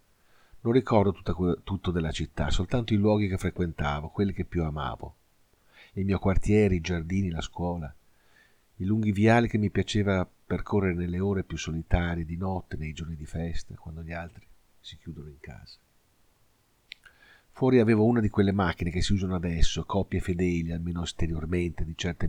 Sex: male